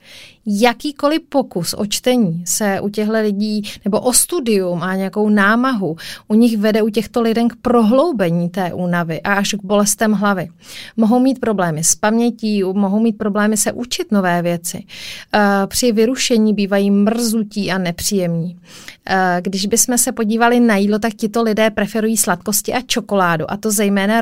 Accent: native